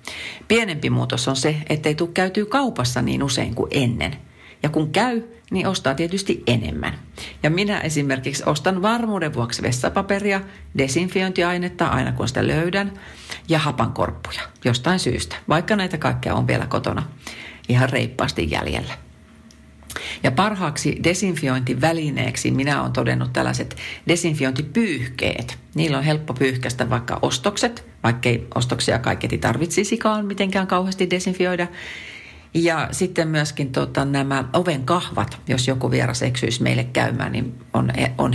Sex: female